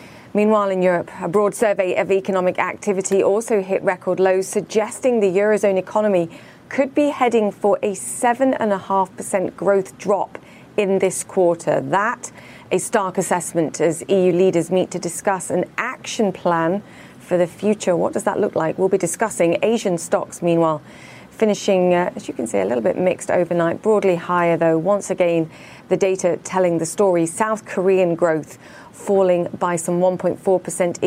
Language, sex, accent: English, female, British